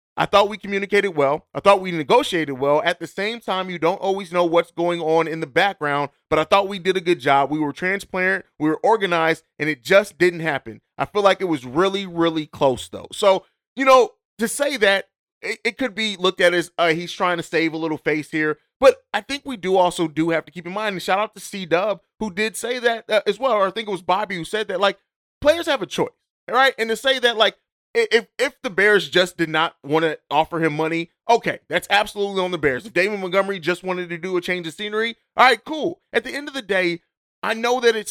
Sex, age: male, 30-49